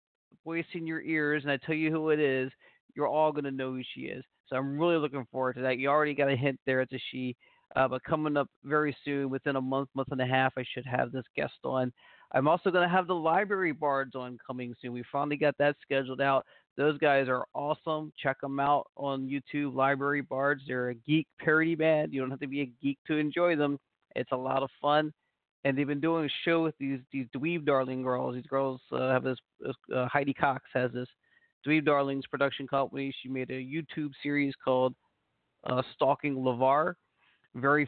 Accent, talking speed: American, 220 wpm